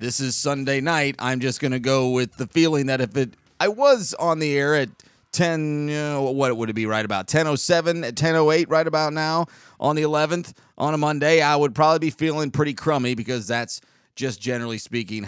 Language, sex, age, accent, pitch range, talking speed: English, male, 30-49, American, 110-140 Hz, 205 wpm